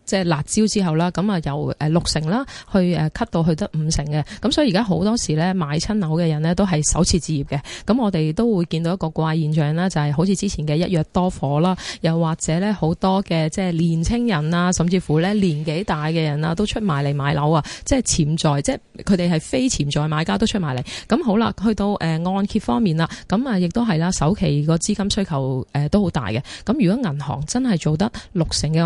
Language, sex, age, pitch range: Chinese, female, 20-39, 155-205 Hz